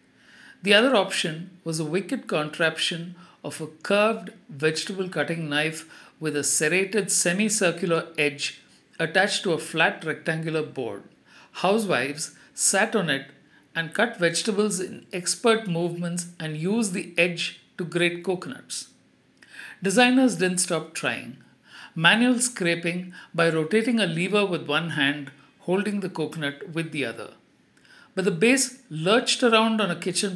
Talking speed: 135 wpm